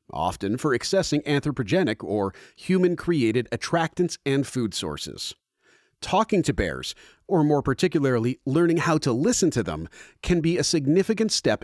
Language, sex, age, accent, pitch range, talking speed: English, male, 40-59, American, 120-165 Hz, 140 wpm